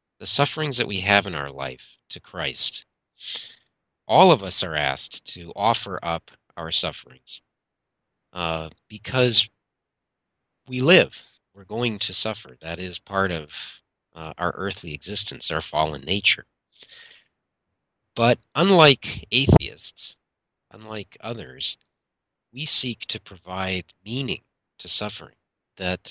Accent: American